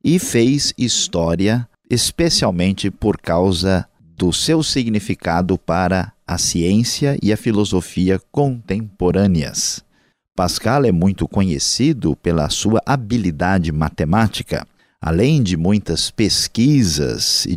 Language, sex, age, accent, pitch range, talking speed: Portuguese, male, 50-69, Brazilian, 85-120 Hz, 100 wpm